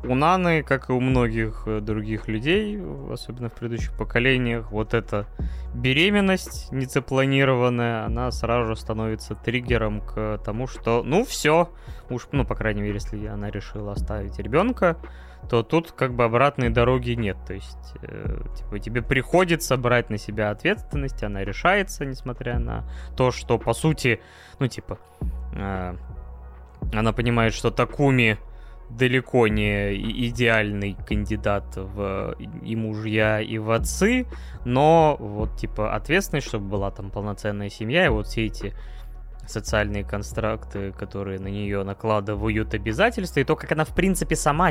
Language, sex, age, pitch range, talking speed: Russian, male, 20-39, 100-130 Hz, 140 wpm